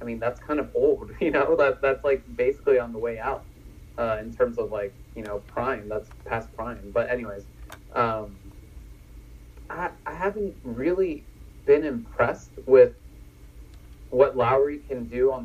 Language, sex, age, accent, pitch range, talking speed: English, male, 30-49, American, 105-145 Hz, 165 wpm